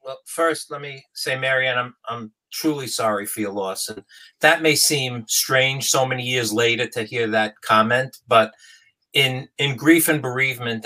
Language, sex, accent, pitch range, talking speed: English, male, American, 110-140 Hz, 175 wpm